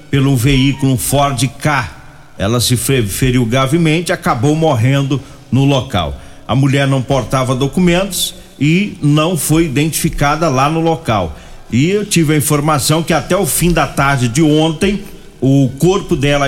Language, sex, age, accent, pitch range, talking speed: Portuguese, male, 50-69, Brazilian, 135-165 Hz, 150 wpm